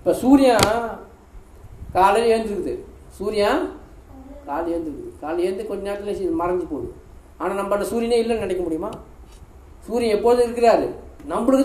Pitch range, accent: 175-230 Hz, native